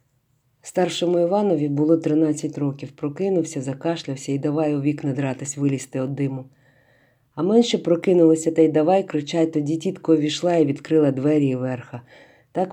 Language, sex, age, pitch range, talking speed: Ukrainian, female, 40-59, 135-170 Hz, 145 wpm